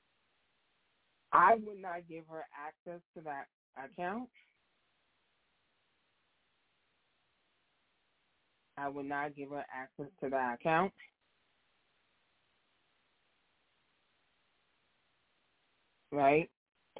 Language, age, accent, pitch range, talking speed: English, 20-39, American, 140-175 Hz, 65 wpm